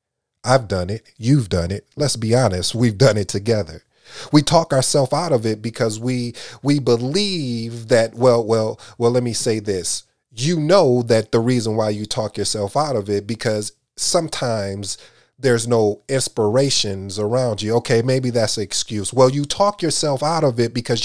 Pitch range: 110-140 Hz